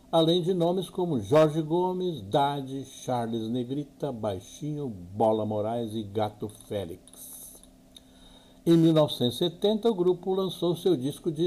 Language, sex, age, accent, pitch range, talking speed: Portuguese, male, 60-79, Brazilian, 110-160 Hz, 120 wpm